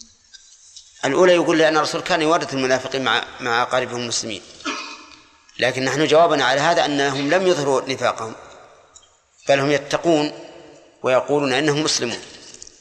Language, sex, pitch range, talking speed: Arabic, male, 140-170 Hz, 120 wpm